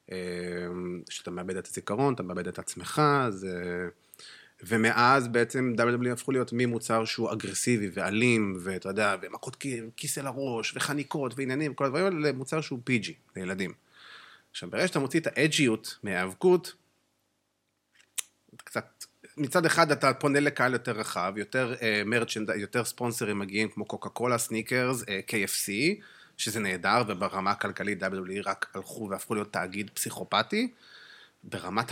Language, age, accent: Hebrew, 30-49, native